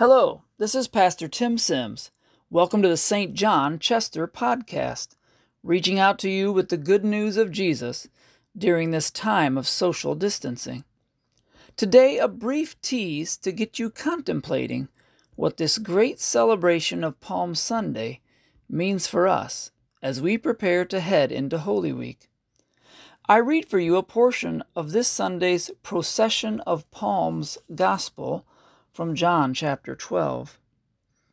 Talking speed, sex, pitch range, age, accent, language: 140 wpm, male, 160-225 Hz, 40-59, American, English